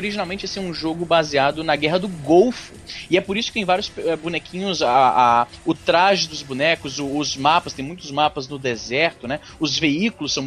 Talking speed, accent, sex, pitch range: 210 wpm, Brazilian, male, 135-190 Hz